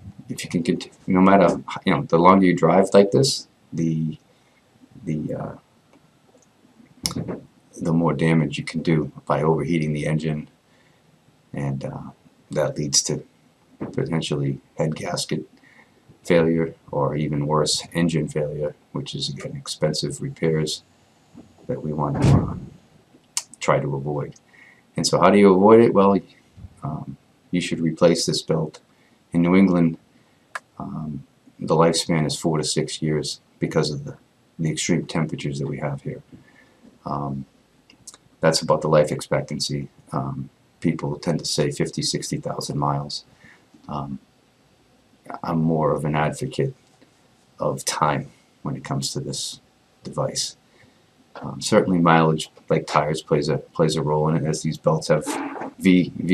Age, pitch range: 30-49, 75-85 Hz